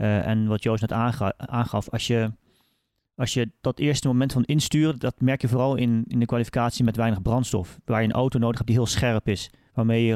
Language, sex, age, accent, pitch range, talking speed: Dutch, male, 30-49, Dutch, 110-125 Hz, 230 wpm